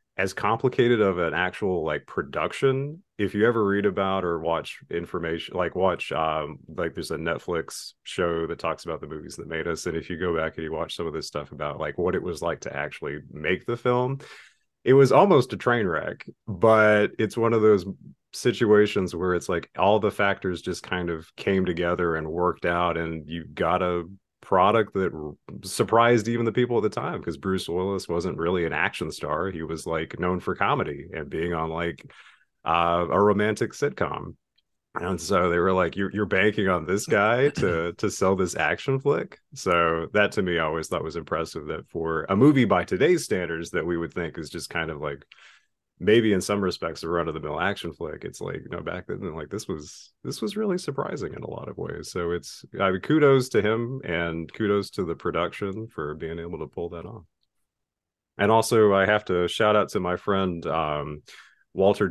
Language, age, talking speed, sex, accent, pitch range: English, 30-49, 205 wpm, male, American, 85-105 Hz